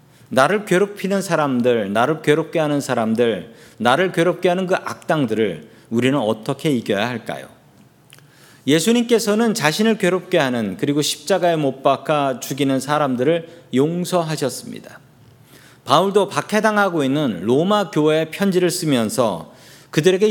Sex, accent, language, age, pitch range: male, native, Korean, 40-59, 130-185 Hz